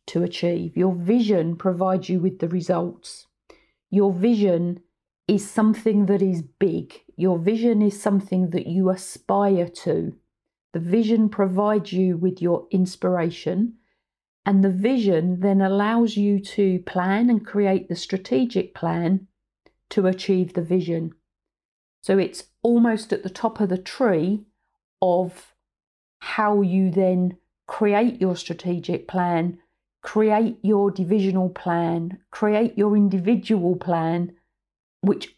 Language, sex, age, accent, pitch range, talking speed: English, female, 40-59, British, 175-210 Hz, 125 wpm